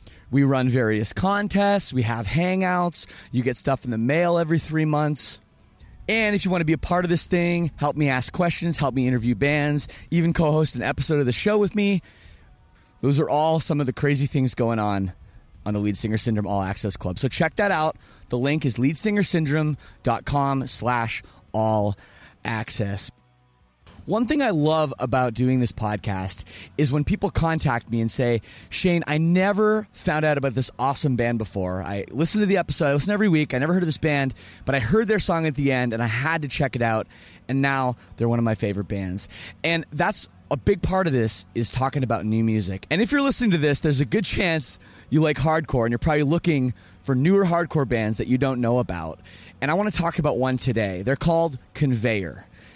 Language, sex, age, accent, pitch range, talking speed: English, male, 20-39, American, 110-165 Hz, 210 wpm